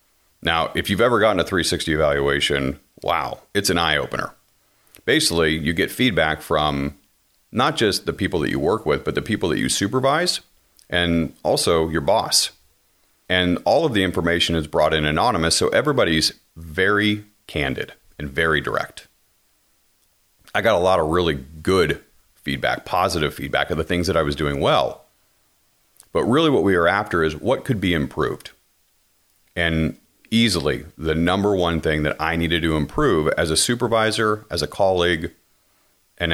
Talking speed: 160 wpm